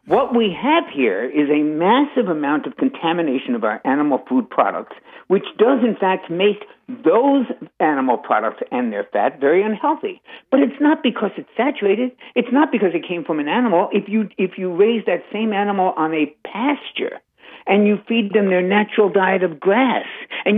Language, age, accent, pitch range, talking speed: English, 60-79, American, 180-260 Hz, 180 wpm